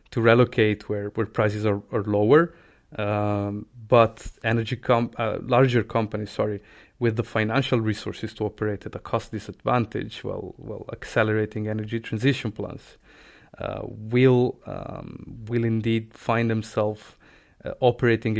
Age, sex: 30-49, male